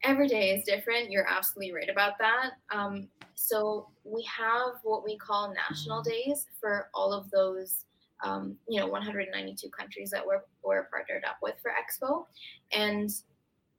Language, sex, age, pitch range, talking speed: English, female, 20-39, 190-220 Hz, 155 wpm